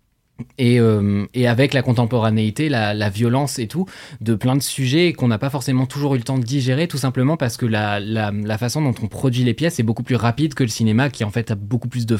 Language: French